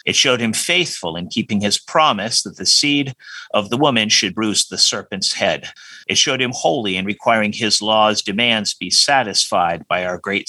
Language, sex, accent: English, male, American